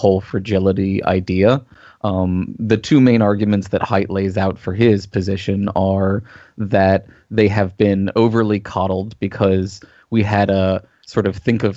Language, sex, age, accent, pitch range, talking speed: English, male, 20-39, American, 95-110 Hz, 155 wpm